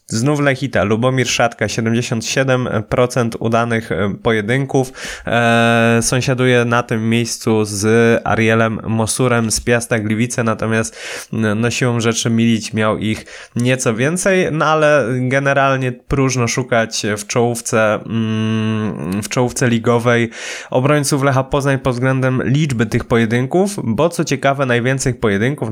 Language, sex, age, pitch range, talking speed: Polish, male, 20-39, 110-130 Hz, 110 wpm